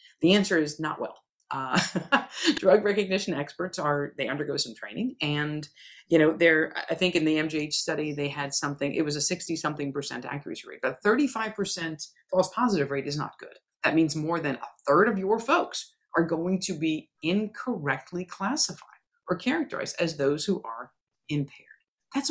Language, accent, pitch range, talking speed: English, American, 145-190 Hz, 180 wpm